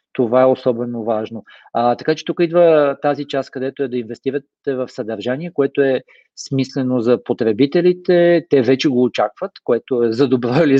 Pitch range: 115-145 Hz